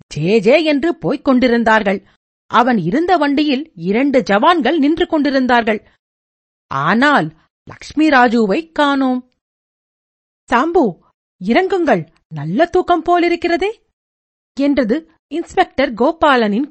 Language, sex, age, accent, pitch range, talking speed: Tamil, female, 50-69, native, 215-310 Hz, 85 wpm